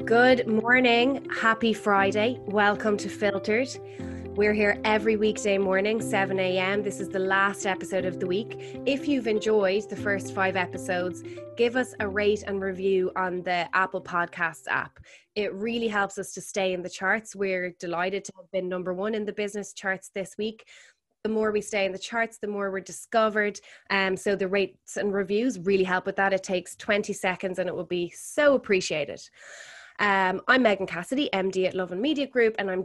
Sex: female